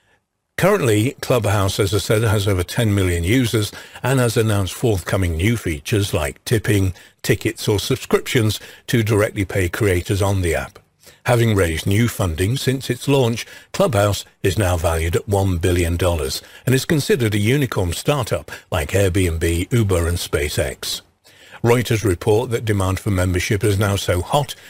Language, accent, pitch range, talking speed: English, British, 95-115 Hz, 155 wpm